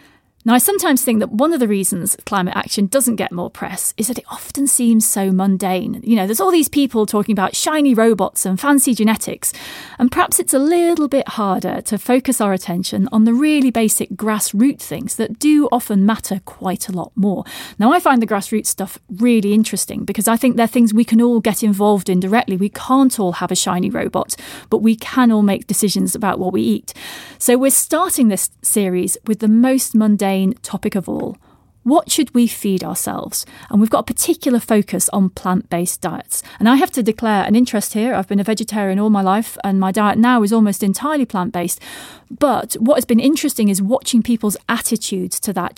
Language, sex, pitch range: English, female, 200-250 Hz